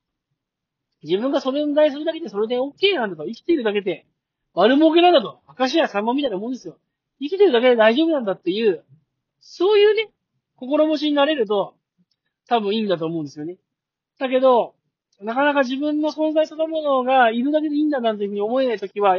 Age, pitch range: 40-59, 175-265 Hz